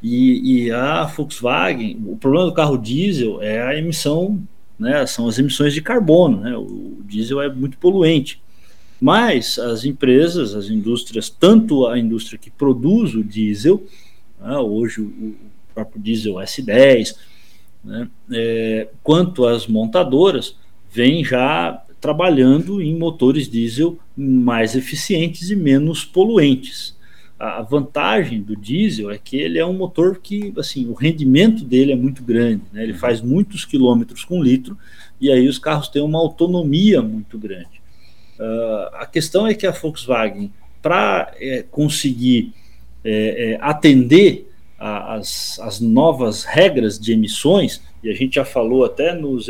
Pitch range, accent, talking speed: 110-165 Hz, Brazilian, 145 wpm